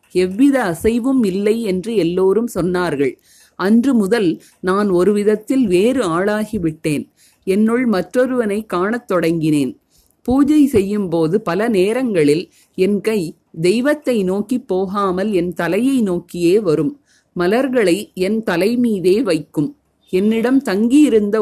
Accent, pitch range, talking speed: native, 180-235 Hz, 100 wpm